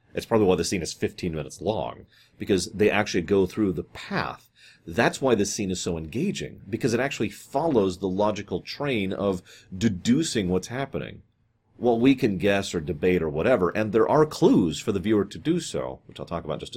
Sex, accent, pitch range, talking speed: male, American, 90-120 Hz, 210 wpm